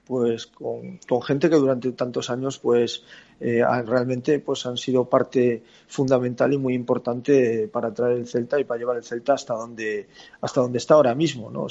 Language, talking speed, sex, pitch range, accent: Spanish, 190 wpm, male, 120-135 Hz, Spanish